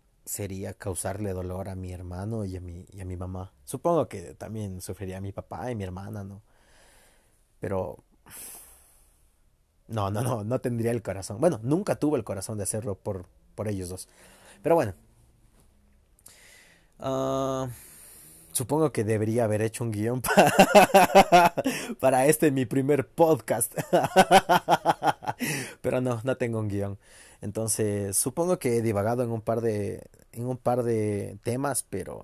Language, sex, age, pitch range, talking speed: Spanish, male, 30-49, 100-130 Hz, 145 wpm